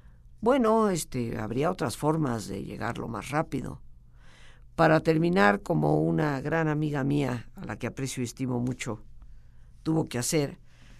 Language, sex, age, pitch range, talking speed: Spanish, female, 50-69, 120-185 Hz, 135 wpm